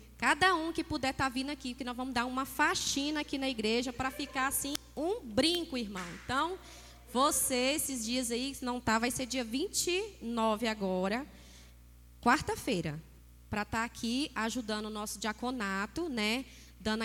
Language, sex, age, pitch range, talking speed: Portuguese, female, 10-29, 185-255 Hz, 160 wpm